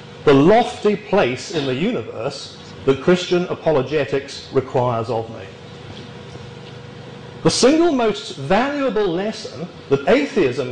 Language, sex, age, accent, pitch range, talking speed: English, male, 40-59, British, 140-200 Hz, 105 wpm